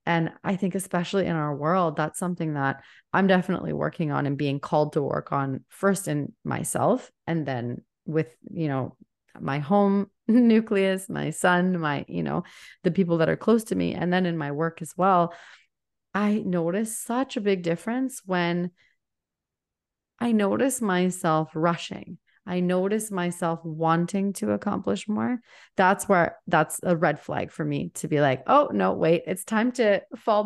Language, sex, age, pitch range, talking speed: English, female, 30-49, 160-195 Hz, 170 wpm